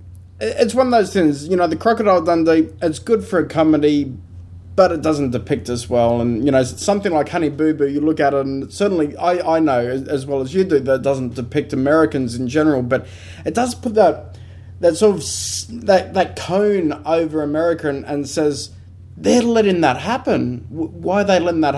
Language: English